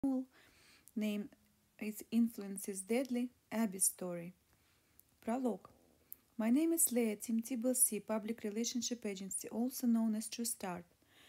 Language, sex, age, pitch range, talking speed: English, female, 30-49, 205-245 Hz, 110 wpm